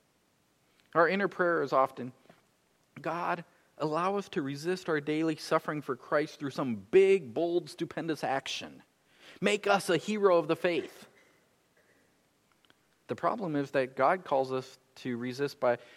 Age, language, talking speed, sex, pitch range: 40-59, English, 145 wpm, male, 135-185 Hz